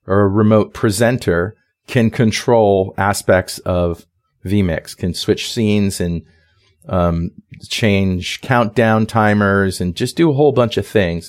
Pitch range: 95-115 Hz